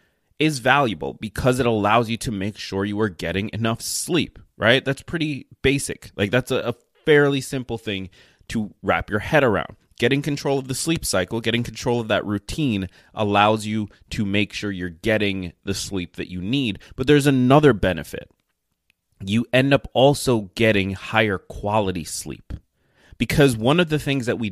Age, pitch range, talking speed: 20-39, 95-130 Hz, 175 wpm